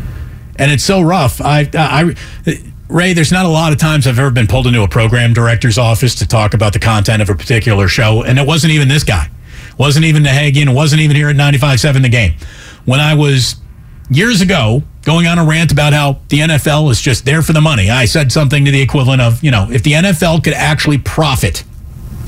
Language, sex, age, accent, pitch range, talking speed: English, male, 40-59, American, 110-155 Hz, 225 wpm